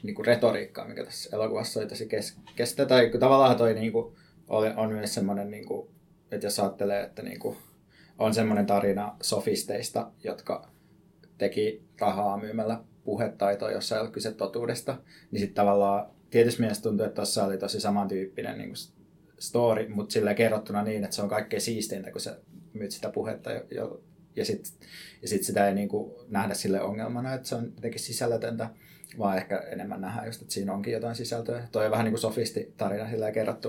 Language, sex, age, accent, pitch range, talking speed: Finnish, male, 20-39, native, 110-135 Hz, 165 wpm